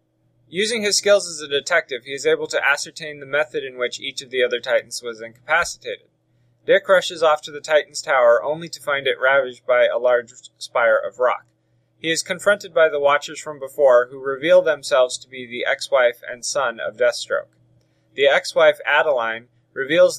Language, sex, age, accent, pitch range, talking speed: English, male, 20-39, American, 125-175 Hz, 185 wpm